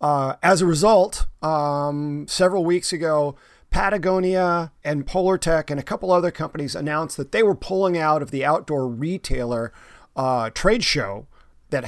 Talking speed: 155 wpm